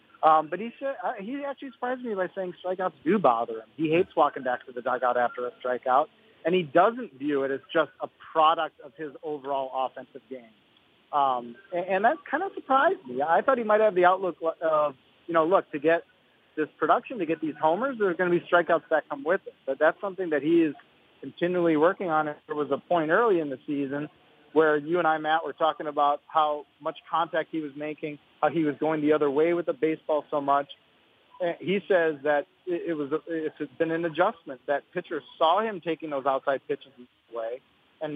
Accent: American